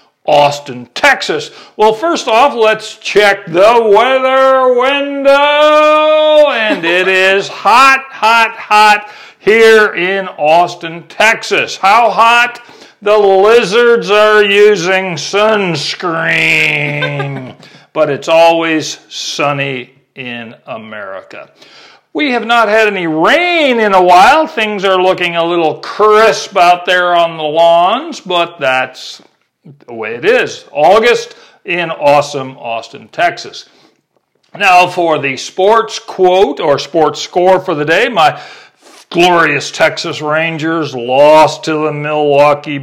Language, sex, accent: English, male, American